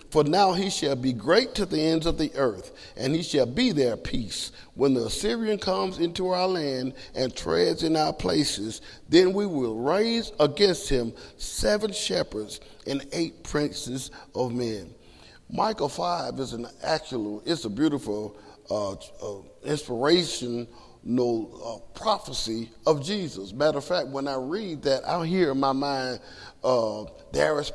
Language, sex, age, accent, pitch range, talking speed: English, male, 40-59, American, 125-165 Hz, 160 wpm